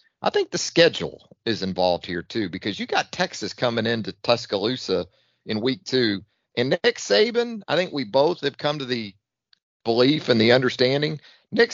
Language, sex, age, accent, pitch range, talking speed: English, male, 40-59, American, 115-185 Hz, 175 wpm